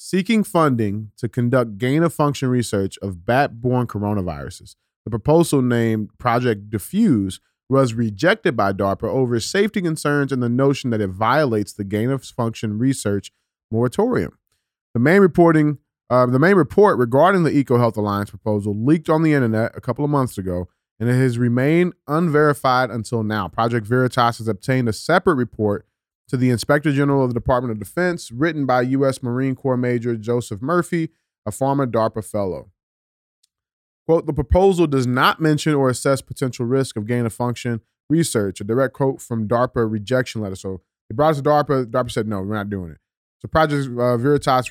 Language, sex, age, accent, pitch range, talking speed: English, male, 30-49, American, 110-140 Hz, 165 wpm